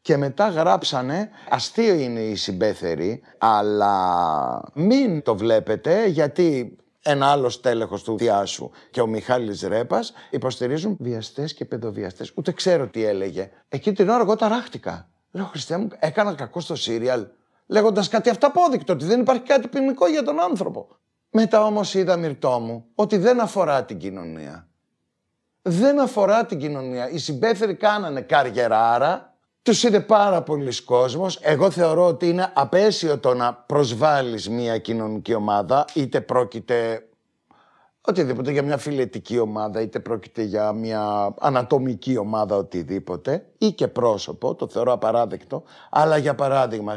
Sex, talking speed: male, 140 wpm